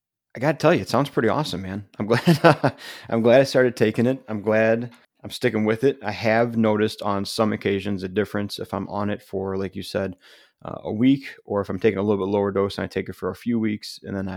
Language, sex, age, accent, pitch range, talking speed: English, male, 30-49, American, 95-105 Hz, 260 wpm